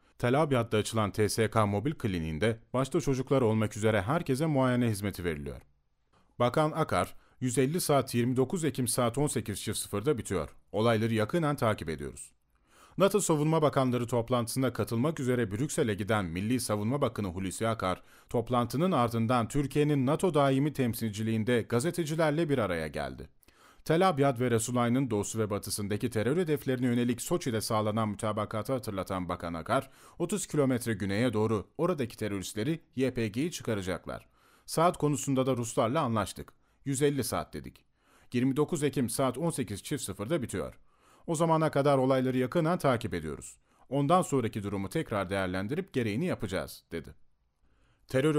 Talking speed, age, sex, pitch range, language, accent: 130 wpm, 40-59, male, 105-140 Hz, Turkish, native